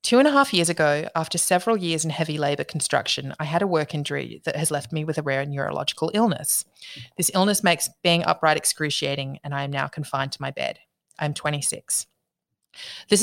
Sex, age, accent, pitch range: female, 30-49, Australian, 145-170 Hz